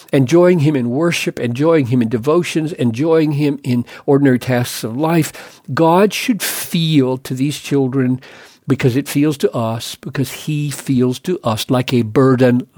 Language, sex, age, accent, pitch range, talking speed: English, male, 50-69, American, 125-165 Hz, 160 wpm